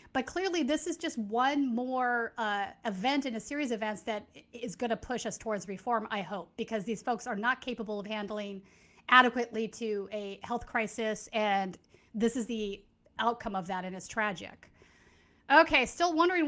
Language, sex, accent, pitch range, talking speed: English, female, American, 220-265 Hz, 180 wpm